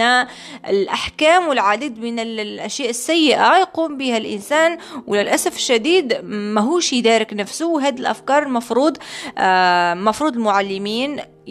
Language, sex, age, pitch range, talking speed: Arabic, female, 20-39, 200-305 Hz, 100 wpm